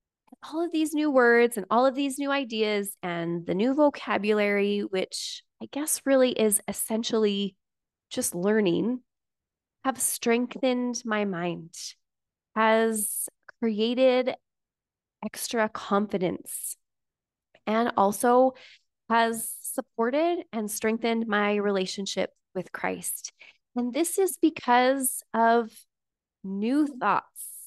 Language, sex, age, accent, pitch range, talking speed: English, female, 20-39, American, 200-265 Hz, 105 wpm